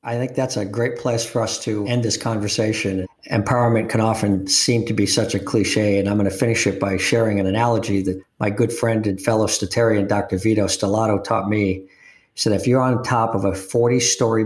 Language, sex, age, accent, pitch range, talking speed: English, male, 50-69, American, 105-125 Hz, 220 wpm